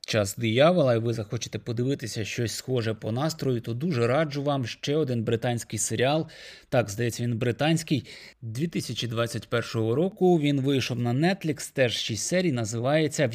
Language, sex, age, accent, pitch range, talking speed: Ukrainian, male, 20-39, native, 115-145 Hz, 150 wpm